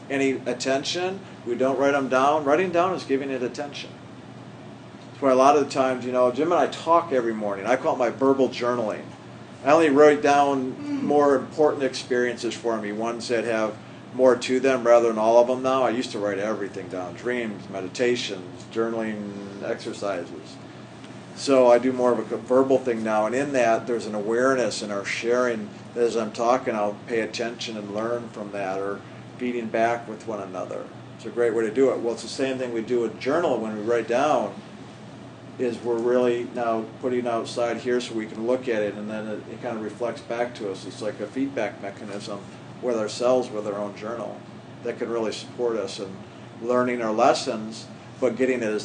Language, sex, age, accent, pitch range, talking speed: English, male, 50-69, American, 110-130 Hz, 205 wpm